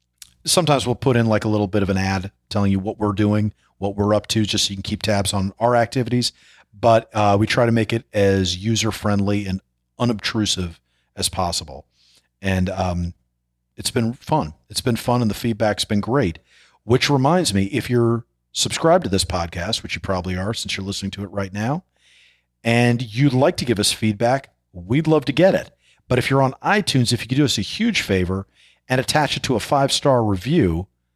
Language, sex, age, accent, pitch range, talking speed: English, male, 40-59, American, 100-130 Hz, 210 wpm